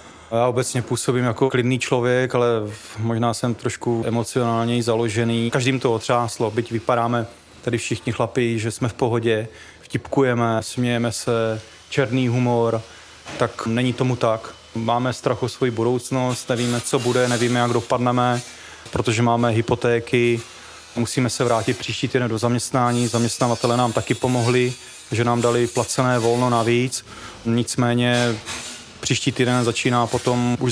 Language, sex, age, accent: Czech, male, 20-39, native